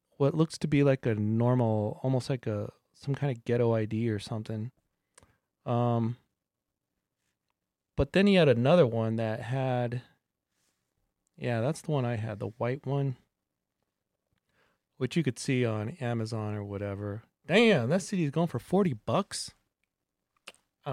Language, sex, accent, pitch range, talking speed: English, male, American, 110-145 Hz, 145 wpm